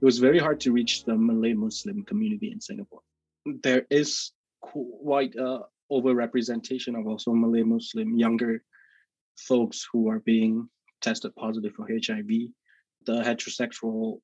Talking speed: 135 wpm